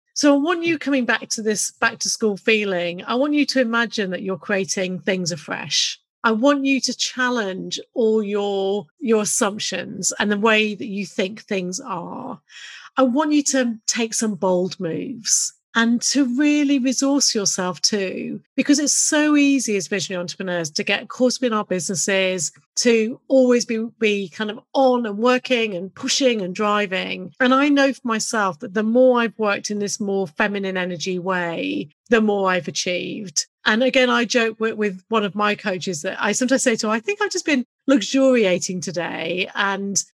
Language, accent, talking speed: English, British, 180 wpm